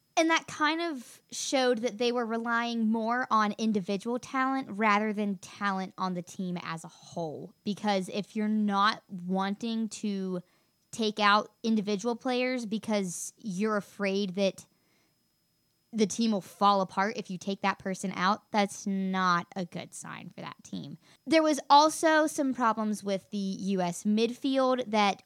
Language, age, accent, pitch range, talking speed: English, 20-39, American, 195-245 Hz, 155 wpm